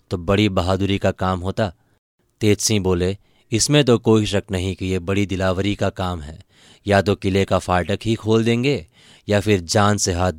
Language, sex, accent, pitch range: Hindi, male, native, 95-110 Hz